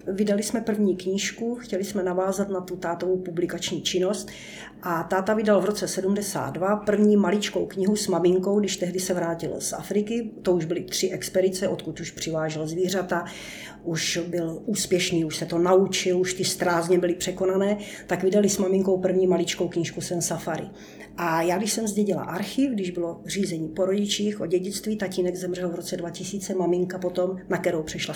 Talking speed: 175 wpm